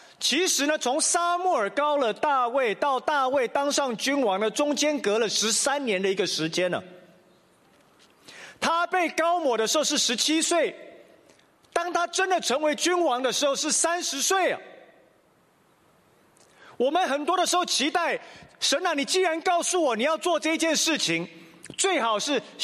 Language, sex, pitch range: English, male, 270-355 Hz